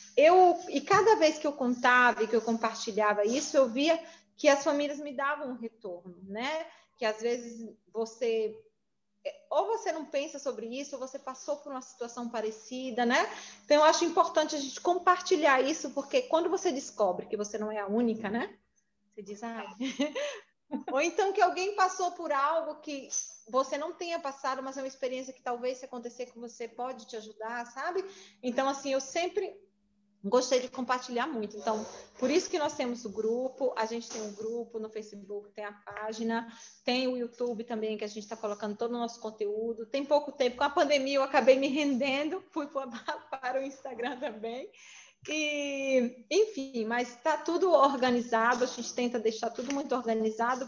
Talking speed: 180 wpm